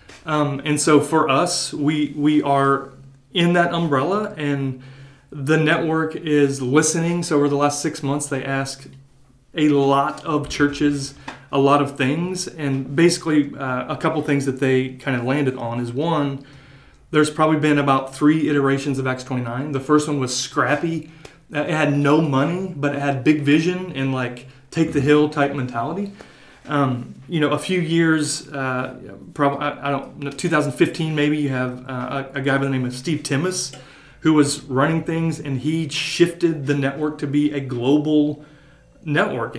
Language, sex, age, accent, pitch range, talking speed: English, male, 30-49, American, 135-155 Hz, 175 wpm